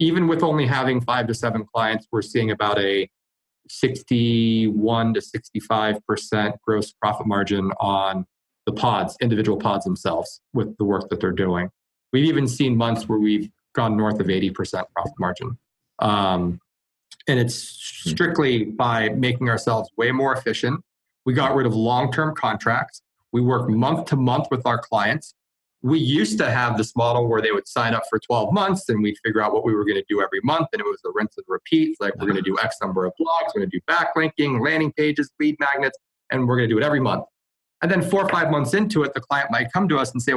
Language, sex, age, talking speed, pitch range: English, male, 30-49, 210 wpm, 110-145 Hz